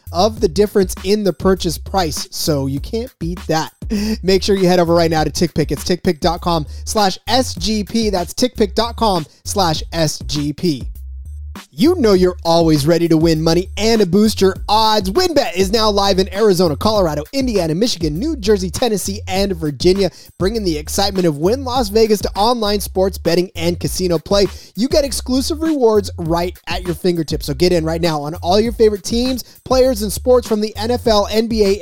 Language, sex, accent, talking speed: English, male, American, 175 wpm